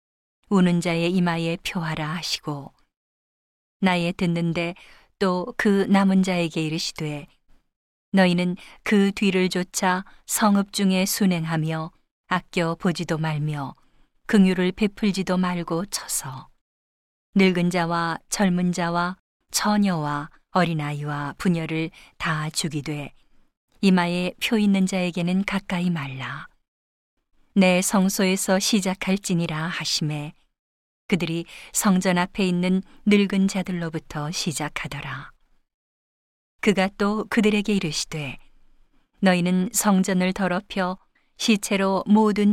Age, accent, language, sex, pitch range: 40-59, native, Korean, female, 165-195 Hz